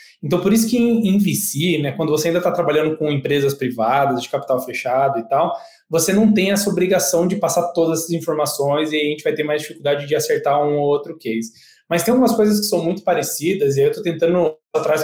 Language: Portuguese